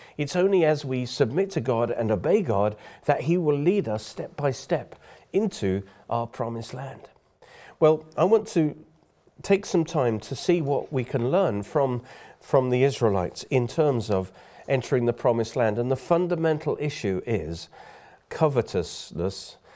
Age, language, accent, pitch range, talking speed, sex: 50-69, English, British, 100-140 Hz, 160 wpm, male